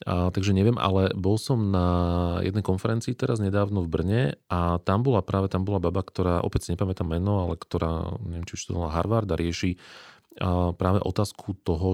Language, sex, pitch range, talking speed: Slovak, male, 90-105 Hz, 185 wpm